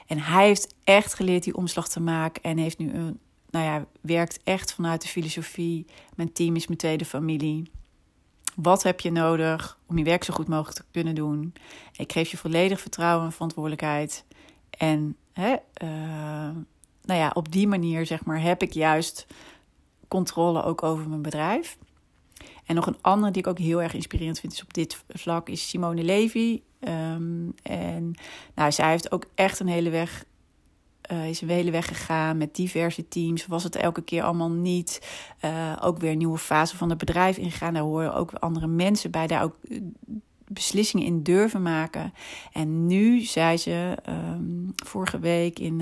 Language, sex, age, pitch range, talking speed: Dutch, female, 30-49, 160-180 Hz, 175 wpm